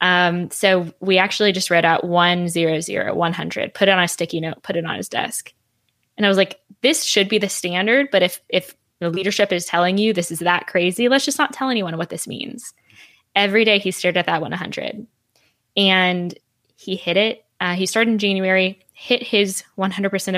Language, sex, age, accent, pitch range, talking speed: English, female, 10-29, American, 175-205 Hz, 205 wpm